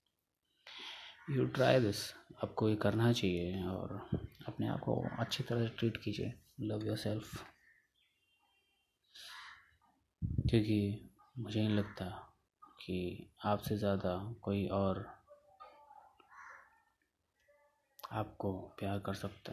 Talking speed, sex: 95 wpm, male